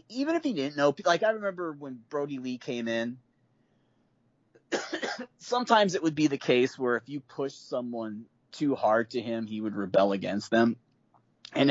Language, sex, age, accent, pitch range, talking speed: English, male, 30-49, American, 105-145 Hz, 175 wpm